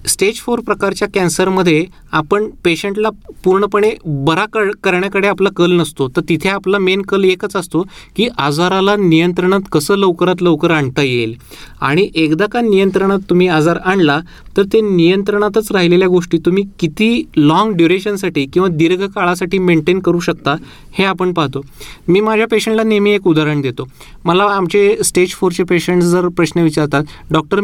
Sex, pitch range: male, 155-195 Hz